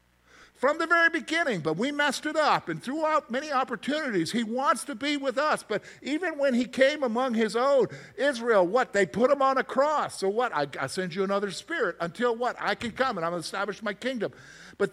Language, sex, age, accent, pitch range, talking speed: English, male, 50-69, American, 160-260 Hz, 225 wpm